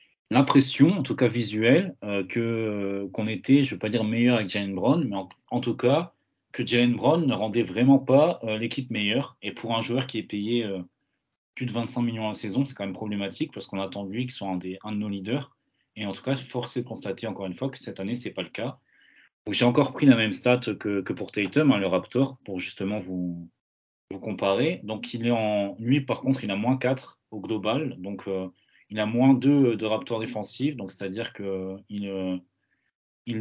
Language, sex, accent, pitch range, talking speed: French, male, French, 100-125 Hz, 235 wpm